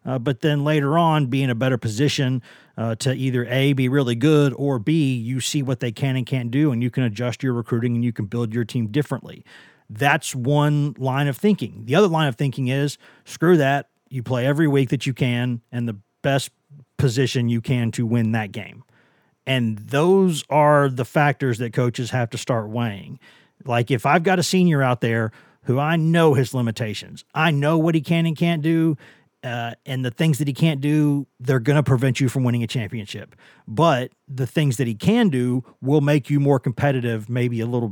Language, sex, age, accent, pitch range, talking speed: English, male, 40-59, American, 120-150 Hz, 210 wpm